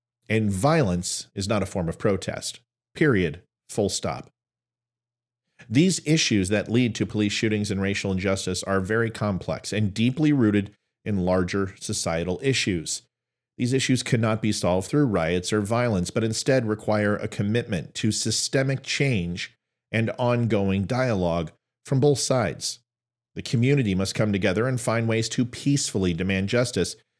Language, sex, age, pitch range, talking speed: English, male, 40-59, 100-125 Hz, 145 wpm